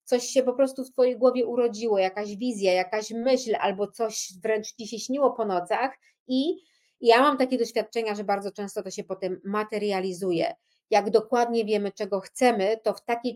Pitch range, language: 210-265 Hz, Polish